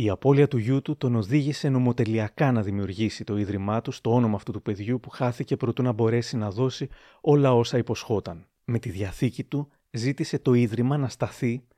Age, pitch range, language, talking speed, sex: 30-49, 115-135 Hz, Greek, 190 wpm, male